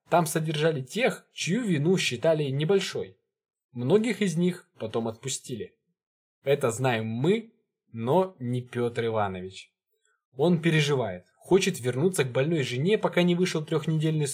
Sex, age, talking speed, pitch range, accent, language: male, 20-39, 125 wpm, 125-180 Hz, native, Russian